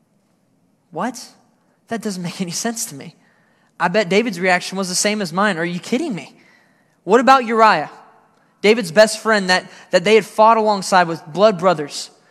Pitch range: 175-220 Hz